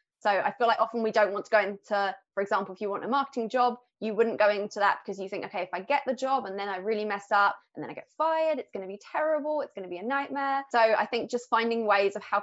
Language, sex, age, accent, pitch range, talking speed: English, female, 20-39, British, 205-250 Hz, 295 wpm